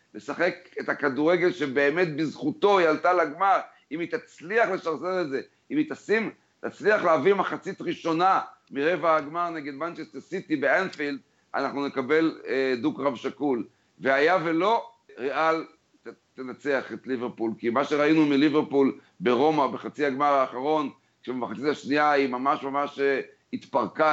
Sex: male